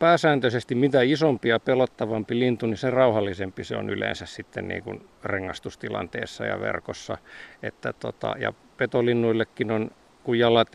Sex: male